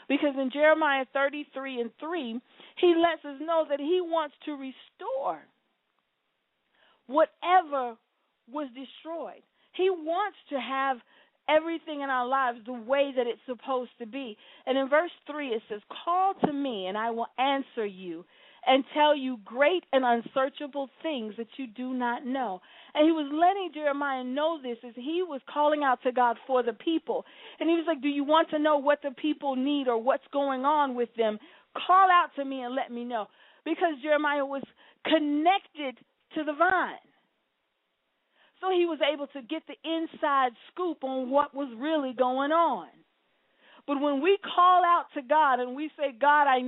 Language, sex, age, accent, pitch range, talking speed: English, female, 40-59, American, 255-315 Hz, 175 wpm